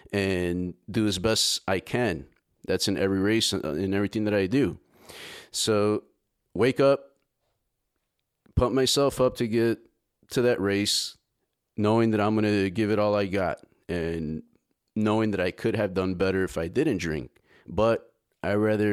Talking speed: 160 wpm